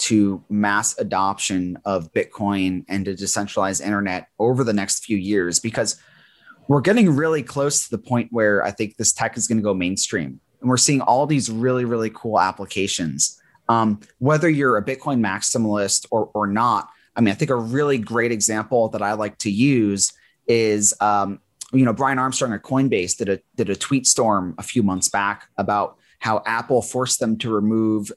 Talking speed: 185 wpm